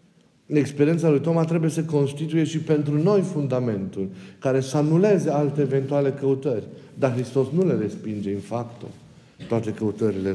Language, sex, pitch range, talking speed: Romanian, male, 125-170 Hz, 145 wpm